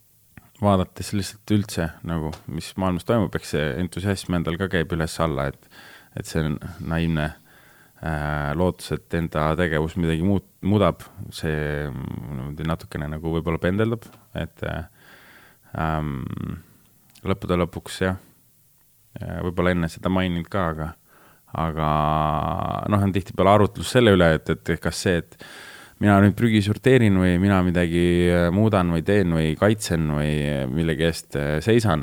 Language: English